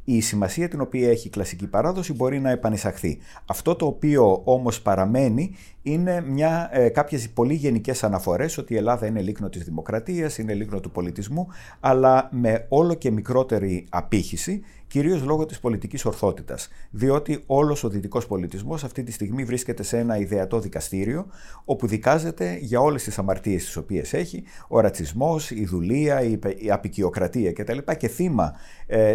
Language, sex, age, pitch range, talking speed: Greek, male, 50-69, 100-135 Hz, 155 wpm